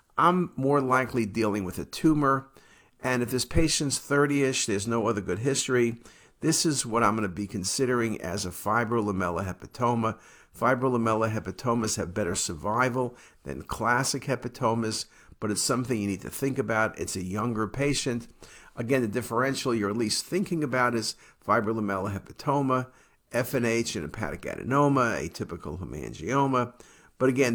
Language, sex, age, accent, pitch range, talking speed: English, male, 50-69, American, 105-130 Hz, 145 wpm